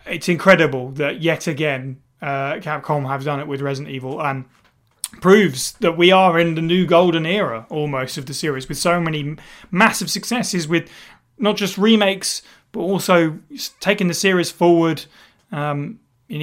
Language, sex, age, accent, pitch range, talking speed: English, male, 30-49, British, 145-200 Hz, 160 wpm